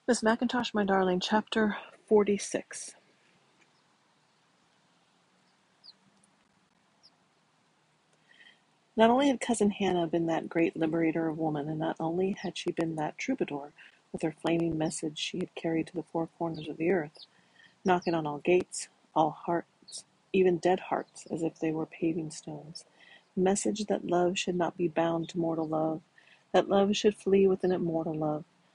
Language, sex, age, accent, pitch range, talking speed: English, female, 40-59, American, 160-195 Hz, 150 wpm